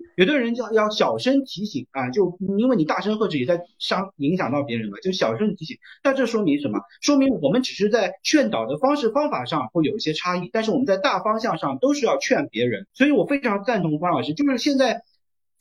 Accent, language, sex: native, Chinese, male